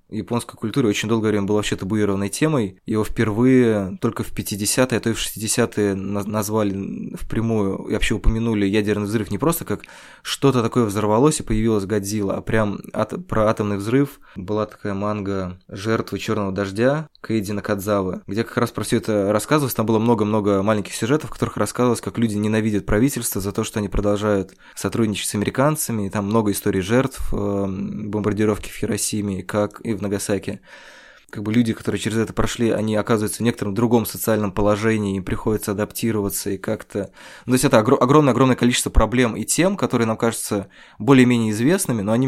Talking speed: 175 wpm